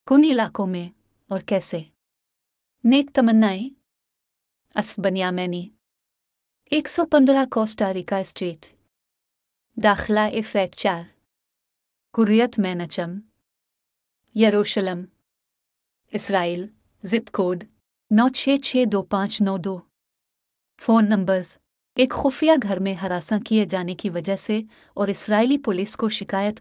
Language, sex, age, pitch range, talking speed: English, female, 30-49, 190-225 Hz, 85 wpm